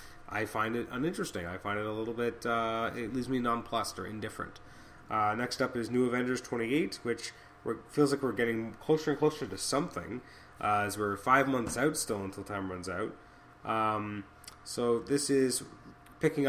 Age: 30-49